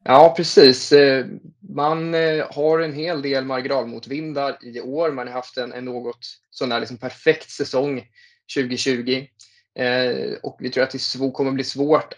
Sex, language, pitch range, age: male, Swedish, 120-140 Hz, 20-39